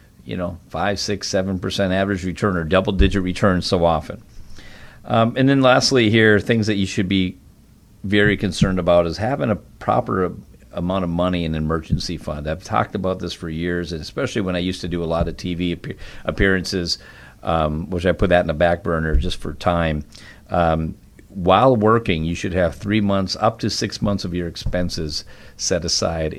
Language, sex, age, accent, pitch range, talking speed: English, male, 50-69, American, 85-105 Hz, 190 wpm